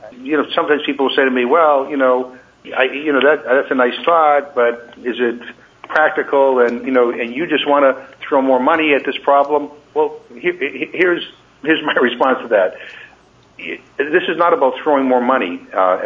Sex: male